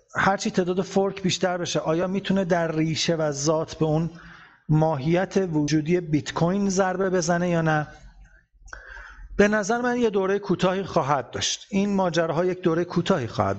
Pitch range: 145-190 Hz